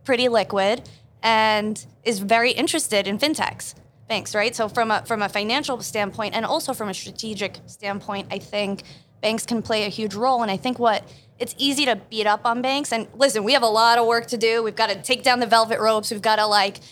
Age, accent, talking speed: 20-39, American, 225 wpm